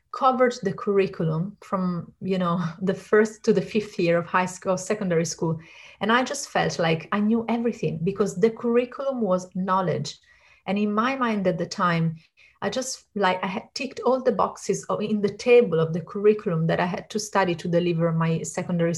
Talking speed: 195 wpm